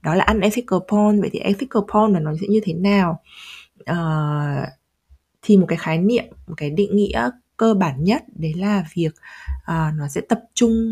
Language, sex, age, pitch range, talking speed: Vietnamese, female, 20-39, 155-205 Hz, 200 wpm